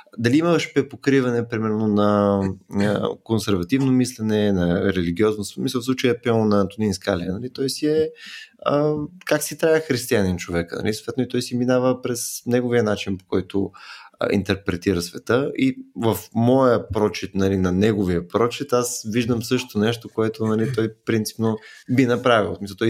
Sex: male